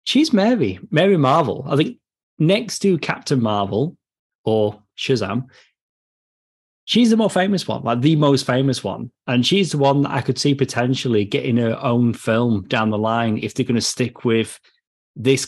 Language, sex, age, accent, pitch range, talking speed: English, male, 30-49, British, 115-145 Hz, 175 wpm